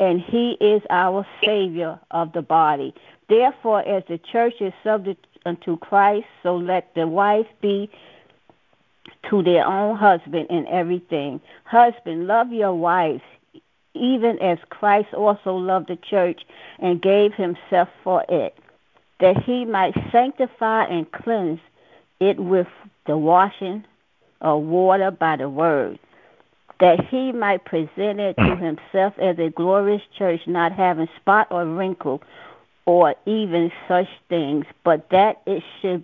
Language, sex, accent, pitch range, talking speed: English, female, American, 170-205 Hz, 135 wpm